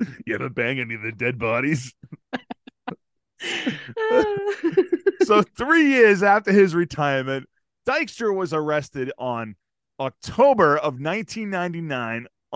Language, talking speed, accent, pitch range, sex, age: English, 100 wpm, American, 135-210 Hz, male, 20-39